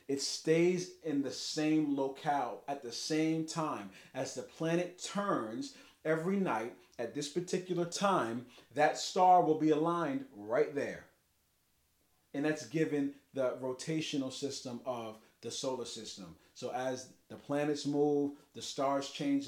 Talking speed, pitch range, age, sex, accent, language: 140 wpm, 120-155 Hz, 40-59, male, American, English